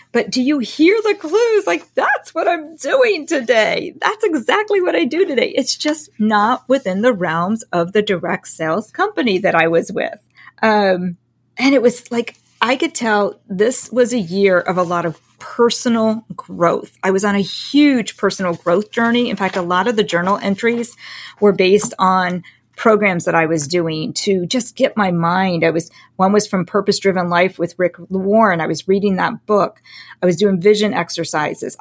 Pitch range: 180-235 Hz